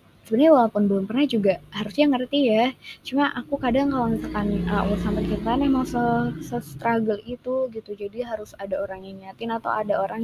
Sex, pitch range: female, 195-230 Hz